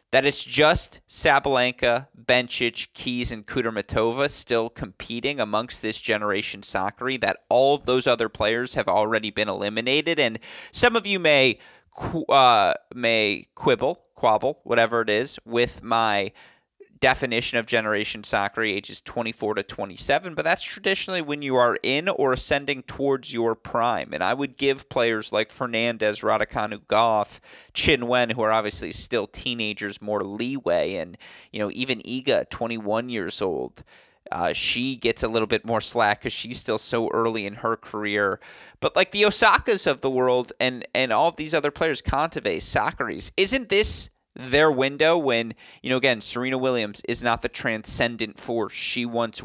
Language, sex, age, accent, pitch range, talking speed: English, male, 30-49, American, 110-135 Hz, 160 wpm